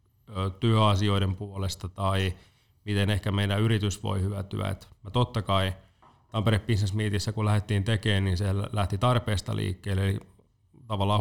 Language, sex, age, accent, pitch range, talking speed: Finnish, male, 30-49, native, 95-105 Hz, 140 wpm